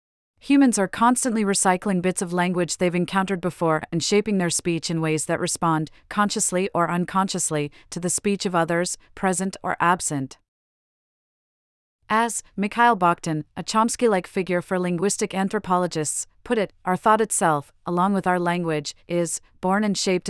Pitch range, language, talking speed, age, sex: 170-200 Hz, English, 150 wpm, 40-59, female